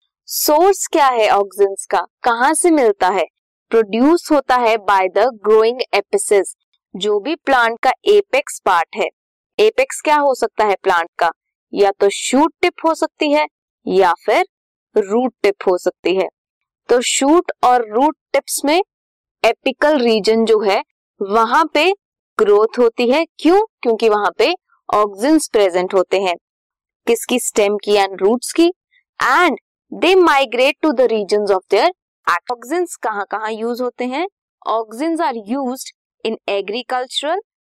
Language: Hindi